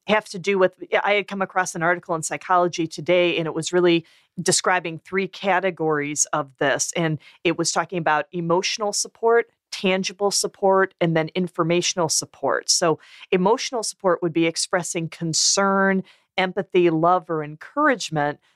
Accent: American